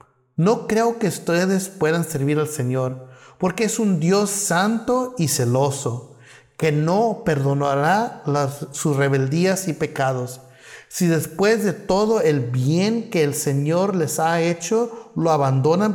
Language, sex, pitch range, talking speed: Spanish, male, 135-185 Hz, 135 wpm